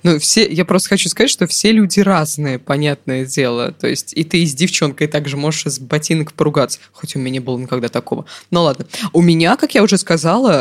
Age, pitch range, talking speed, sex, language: 20-39, 145-175 Hz, 220 wpm, female, Russian